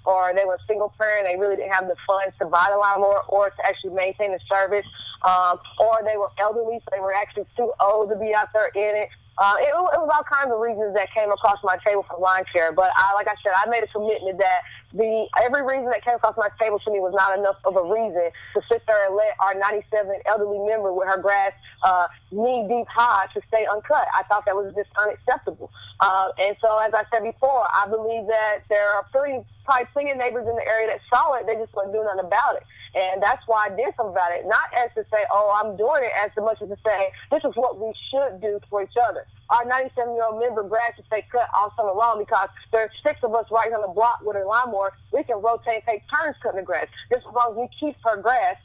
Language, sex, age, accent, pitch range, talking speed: English, female, 20-39, American, 195-235 Hz, 255 wpm